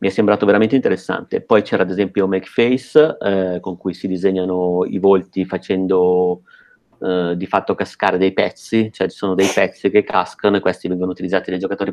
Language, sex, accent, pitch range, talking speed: Italian, male, native, 95-105 Hz, 190 wpm